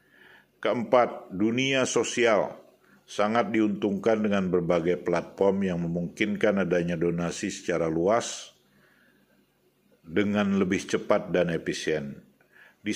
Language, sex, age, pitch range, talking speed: Indonesian, male, 50-69, 90-110 Hz, 95 wpm